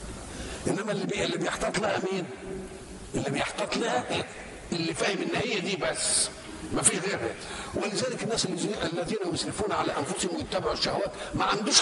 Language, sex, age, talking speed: Arabic, male, 50-69, 130 wpm